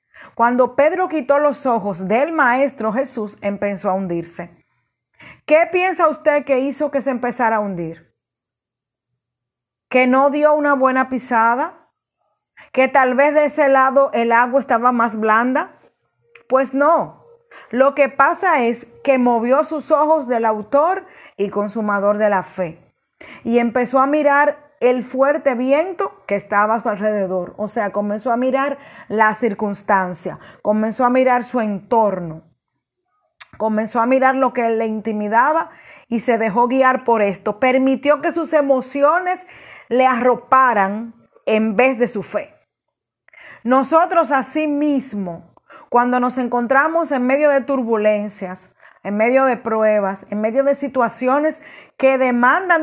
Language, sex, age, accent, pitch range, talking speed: Spanish, female, 30-49, American, 215-280 Hz, 140 wpm